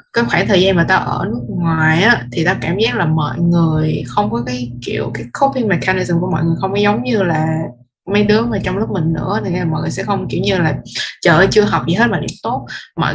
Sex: female